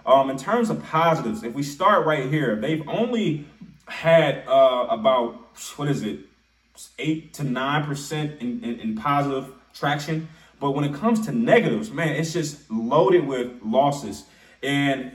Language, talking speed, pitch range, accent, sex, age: English, 155 wpm, 135-180 Hz, American, male, 20-39